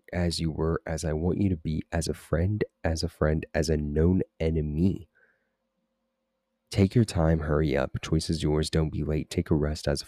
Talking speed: 210 wpm